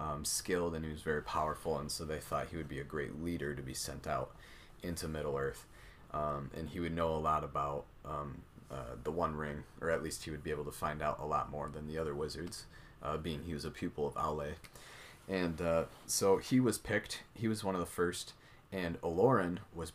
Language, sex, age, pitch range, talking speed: English, male, 30-49, 75-90 Hz, 230 wpm